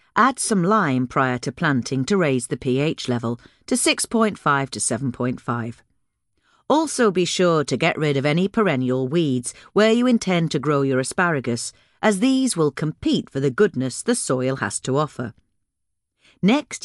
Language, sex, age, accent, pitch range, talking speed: English, female, 40-59, British, 130-200 Hz, 160 wpm